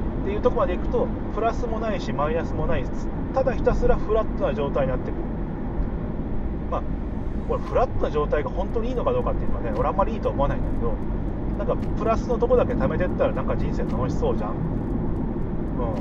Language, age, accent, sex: Japanese, 30-49, native, male